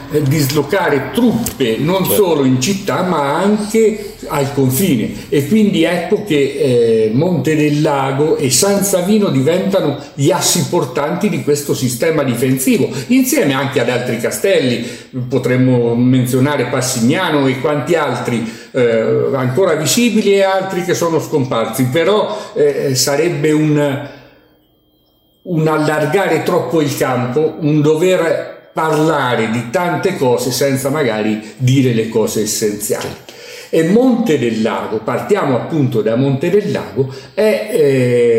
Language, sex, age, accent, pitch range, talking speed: Italian, male, 50-69, native, 125-170 Hz, 125 wpm